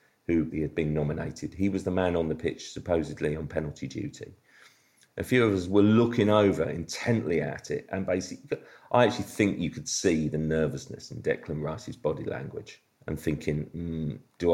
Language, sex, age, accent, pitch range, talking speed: English, male, 40-59, British, 80-110 Hz, 185 wpm